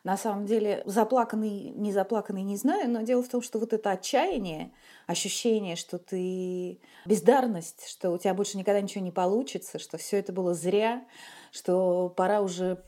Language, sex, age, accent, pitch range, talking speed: Russian, female, 30-49, native, 160-205 Hz, 170 wpm